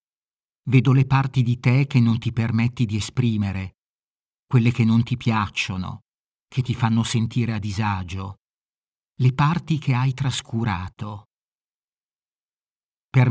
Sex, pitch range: male, 110-130 Hz